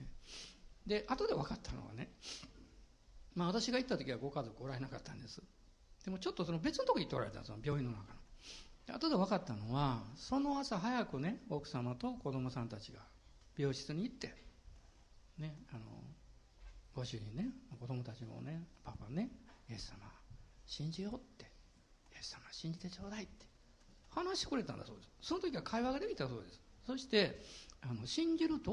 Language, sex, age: Japanese, male, 60-79